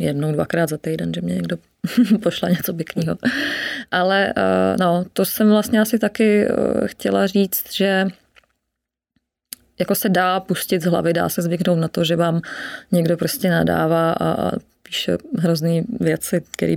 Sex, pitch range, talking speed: female, 160-190 Hz, 145 wpm